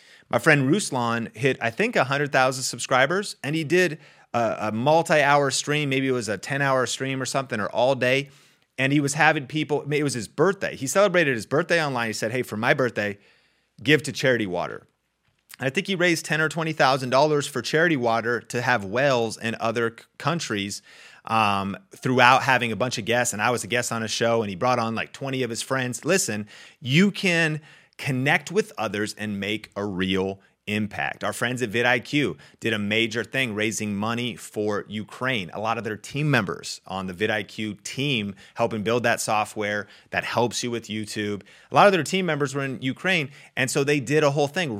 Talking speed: 200 wpm